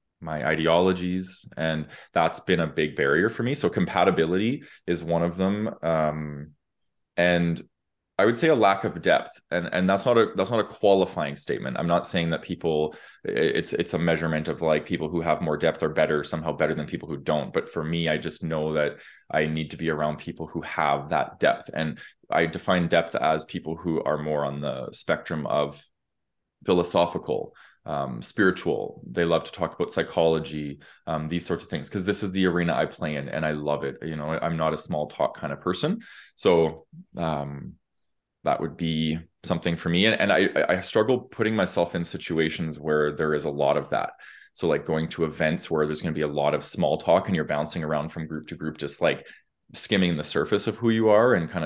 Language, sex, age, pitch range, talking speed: English, male, 20-39, 75-85 Hz, 210 wpm